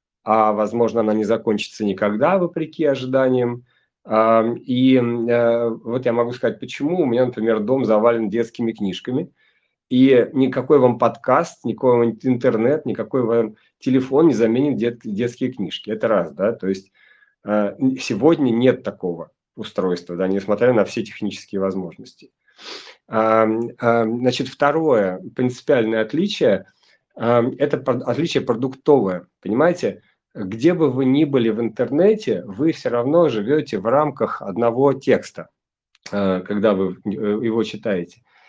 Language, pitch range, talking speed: Russian, 110-135 Hz, 120 wpm